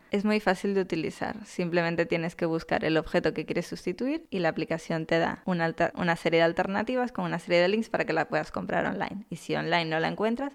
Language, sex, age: Spanish, female, 10-29